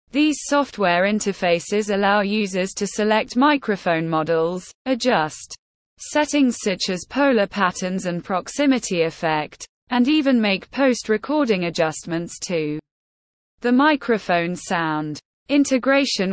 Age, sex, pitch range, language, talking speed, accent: 20-39, female, 175-250 Hz, English, 105 wpm, British